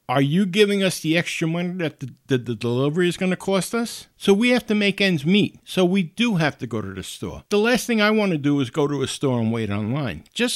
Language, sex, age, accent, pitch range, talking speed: English, male, 50-69, American, 125-180 Hz, 280 wpm